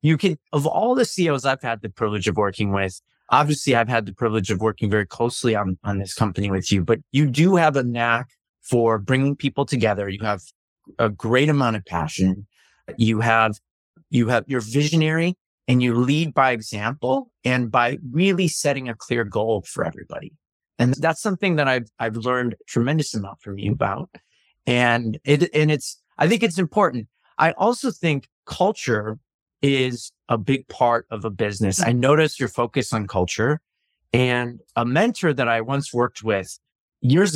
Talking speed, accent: 180 wpm, American